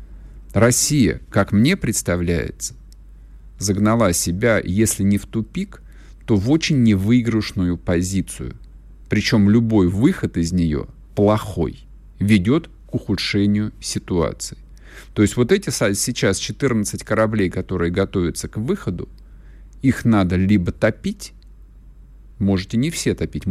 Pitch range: 90-115 Hz